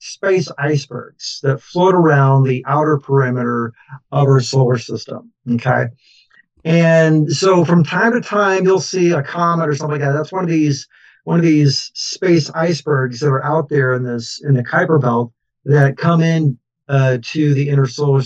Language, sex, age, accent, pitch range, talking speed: English, male, 50-69, American, 130-160 Hz, 180 wpm